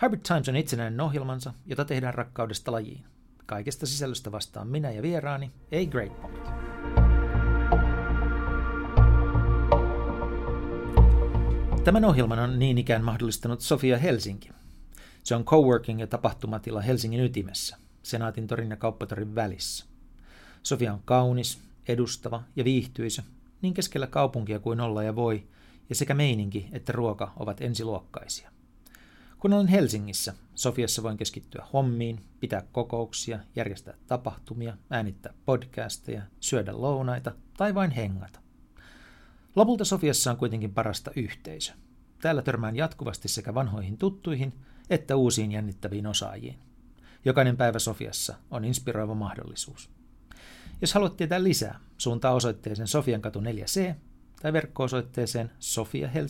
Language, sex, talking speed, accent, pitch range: Finnish, male, 115 wpm, native, 105-130 Hz